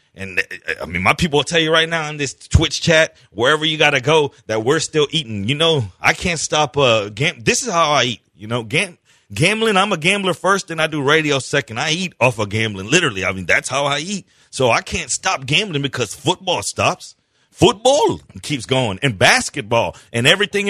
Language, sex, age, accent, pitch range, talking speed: English, male, 30-49, American, 120-165 Hz, 215 wpm